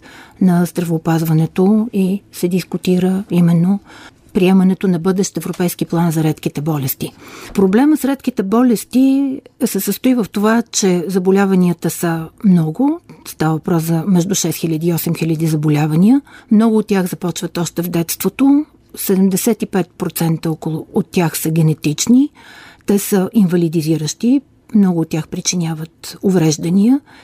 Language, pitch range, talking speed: Bulgarian, 170-220 Hz, 120 wpm